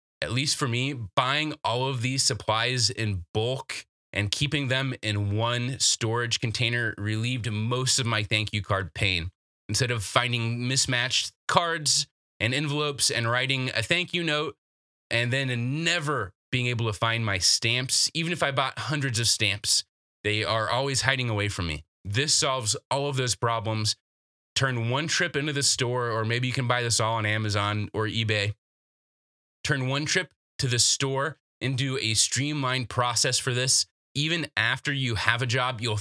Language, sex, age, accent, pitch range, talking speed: English, male, 20-39, American, 110-130 Hz, 175 wpm